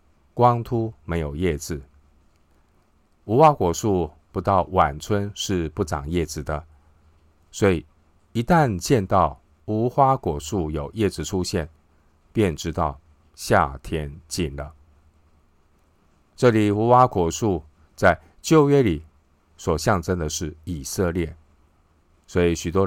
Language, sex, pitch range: Chinese, male, 75-95 Hz